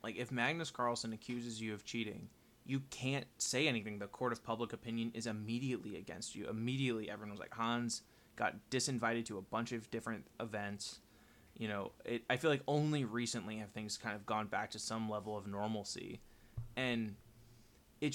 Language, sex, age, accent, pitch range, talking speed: English, male, 20-39, American, 110-125 Hz, 180 wpm